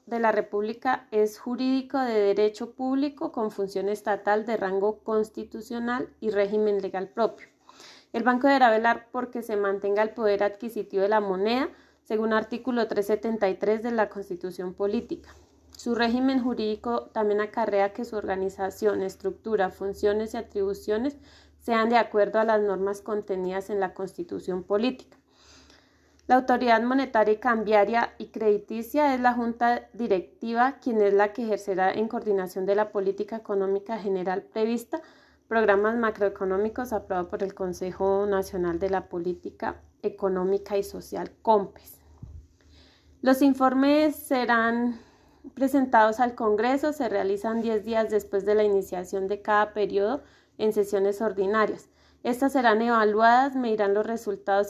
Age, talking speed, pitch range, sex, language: 30-49, 135 wpm, 200-235 Hz, female, Spanish